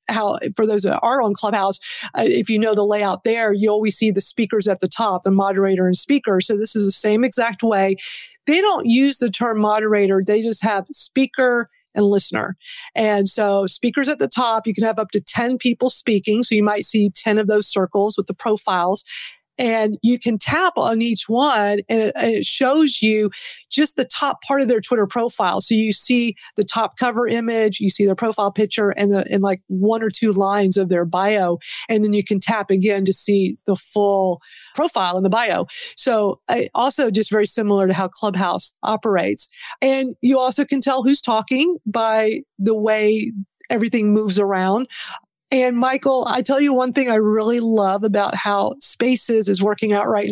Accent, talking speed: American, 195 wpm